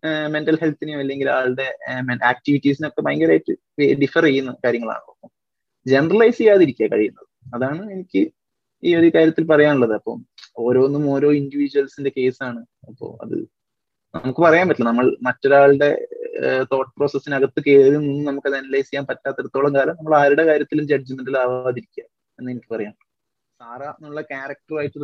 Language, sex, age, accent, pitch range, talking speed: Malayalam, male, 20-39, native, 125-155 Hz, 115 wpm